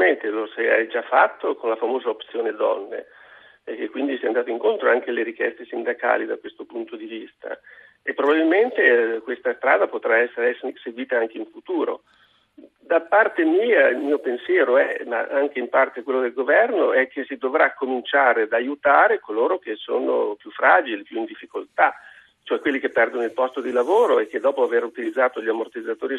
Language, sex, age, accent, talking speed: Italian, male, 50-69, native, 180 wpm